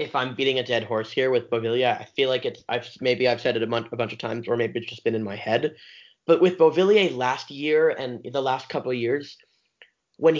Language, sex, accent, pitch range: English, male, American, 115-150 Hz